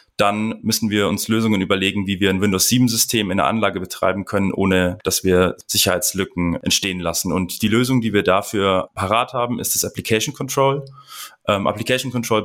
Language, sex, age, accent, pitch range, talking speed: German, male, 20-39, German, 100-120 Hz, 165 wpm